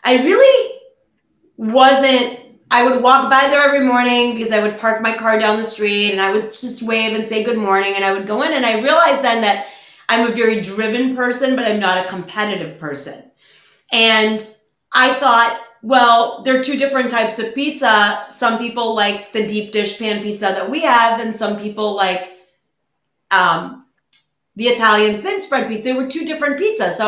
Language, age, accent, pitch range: English, 30-49, American, 205-255 Hz